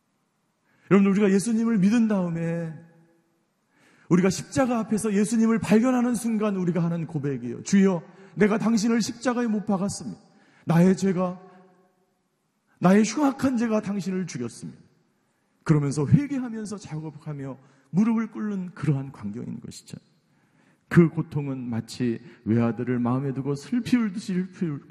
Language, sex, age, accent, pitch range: Korean, male, 40-59, native, 155-210 Hz